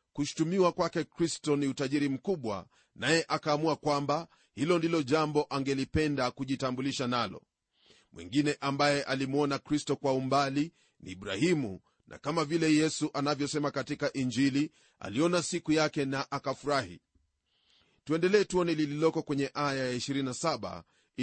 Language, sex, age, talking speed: Swahili, male, 40-59, 120 wpm